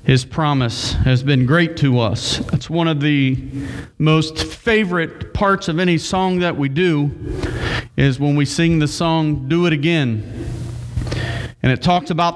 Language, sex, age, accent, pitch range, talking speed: English, male, 40-59, American, 135-210 Hz, 160 wpm